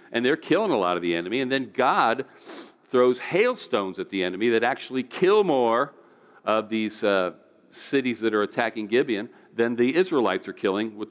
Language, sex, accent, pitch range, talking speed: English, male, American, 95-120 Hz, 185 wpm